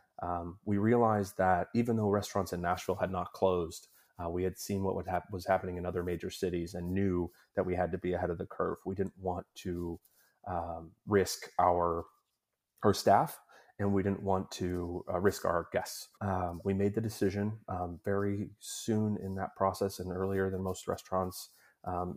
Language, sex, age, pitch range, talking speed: English, male, 30-49, 90-100 Hz, 185 wpm